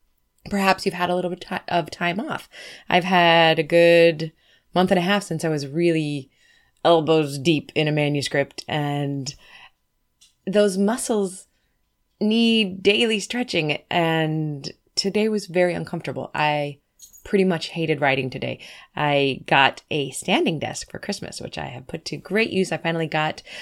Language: English